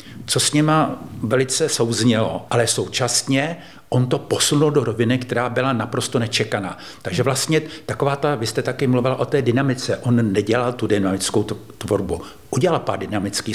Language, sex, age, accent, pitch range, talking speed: Czech, male, 50-69, native, 115-135 Hz, 155 wpm